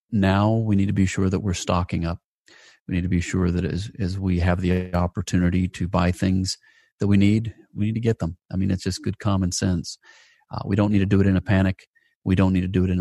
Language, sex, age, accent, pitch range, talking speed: English, male, 40-59, American, 90-105 Hz, 265 wpm